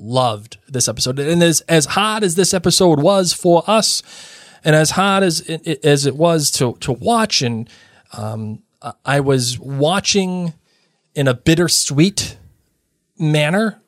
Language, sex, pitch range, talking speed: English, male, 130-170 Hz, 145 wpm